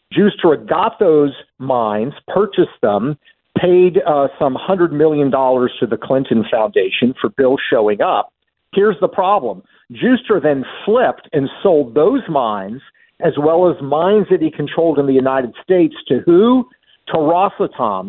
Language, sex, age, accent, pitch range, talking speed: English, male, 50-69, American, 140-190 Hz, 145 wpm